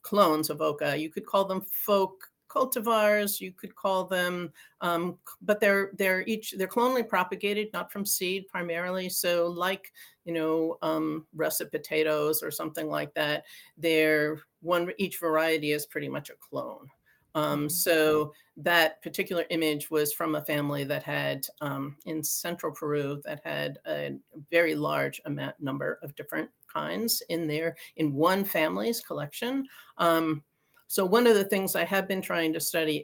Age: 50-69